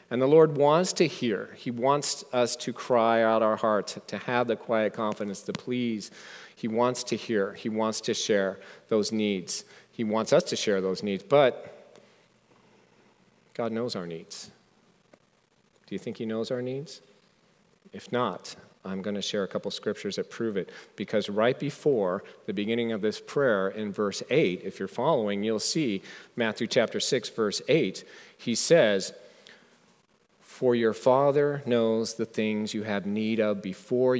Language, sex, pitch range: English, male, 105-140 Hz